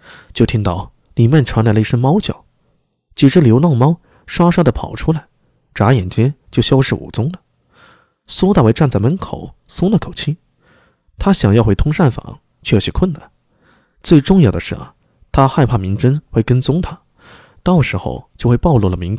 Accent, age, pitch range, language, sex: native, 20-39, 105-155 Hz, Chinese, male